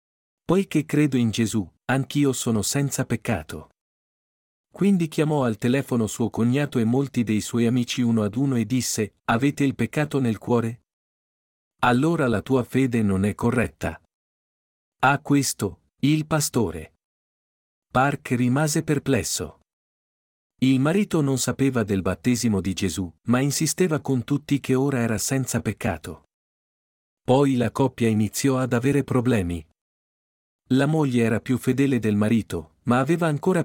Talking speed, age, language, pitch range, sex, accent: 135 wpm, 50-69, Italian, 110-135 Hz, male, native